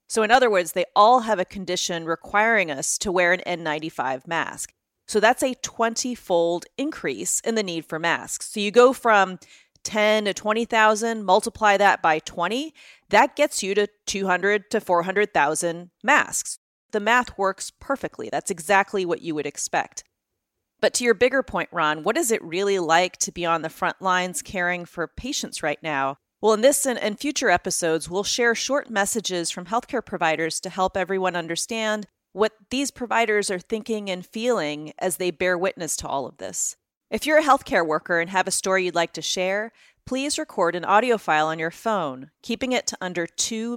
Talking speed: 185 wpm